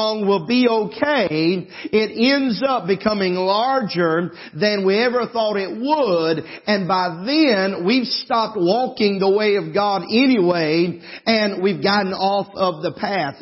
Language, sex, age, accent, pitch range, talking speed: English, male, 40-59, American, 175-215 Hz, 145 wpm